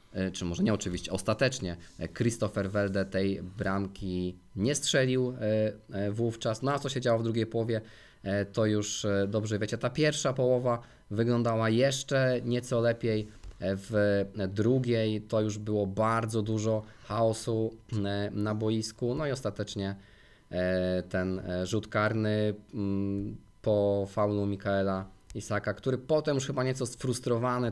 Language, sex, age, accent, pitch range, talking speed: Polish, male, 20-39, native, 100-120 Hz, 125 wpm